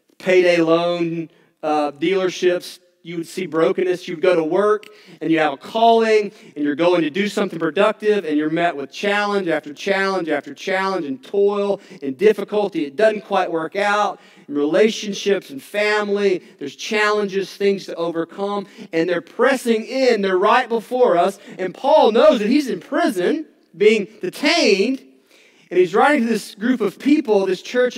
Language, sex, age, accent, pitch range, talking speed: English, male, 40-59, American, 165-220 Hz, 165 wpm